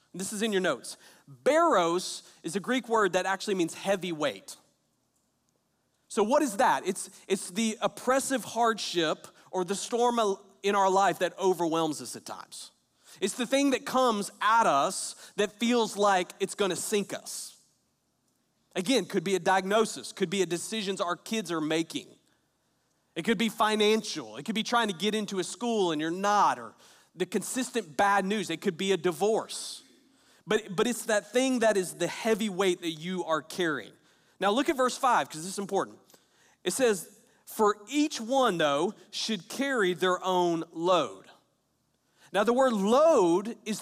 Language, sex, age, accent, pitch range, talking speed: English, male, 40-59, American, 180-225 Hz, 175 wpm